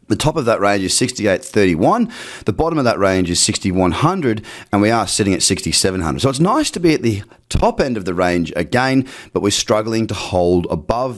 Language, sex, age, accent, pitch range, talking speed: English, male, 30-49, Australian, 90-120 Hz, 210 wpm